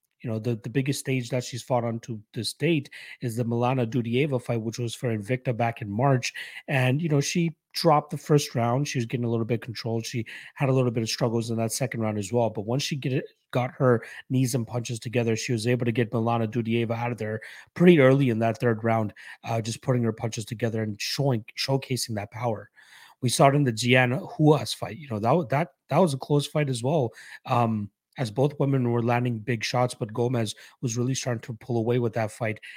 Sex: male